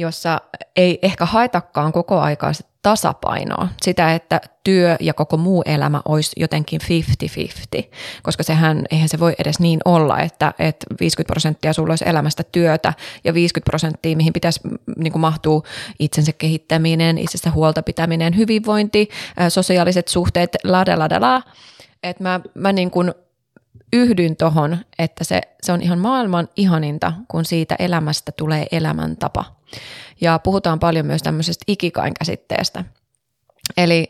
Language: Finnish